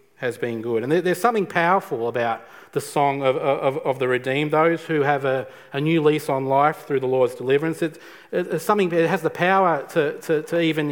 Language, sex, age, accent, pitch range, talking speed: English, male, 40-59, Australian, 140-170 Hz, 215 wpm